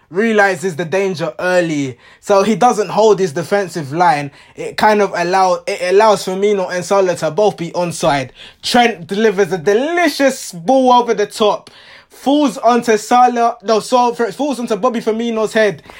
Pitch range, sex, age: 190-240 Hz, male, 20-39